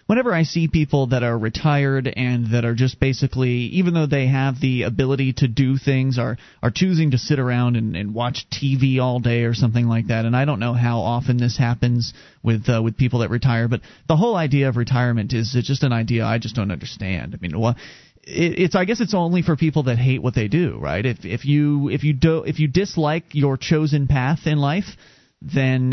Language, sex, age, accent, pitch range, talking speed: English, male, 30-49, American, 120-165 Hz, 225 wpm